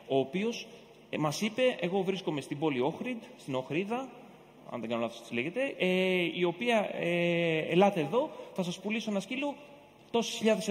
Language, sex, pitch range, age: Greek, male, 150-195 Hz, 30-49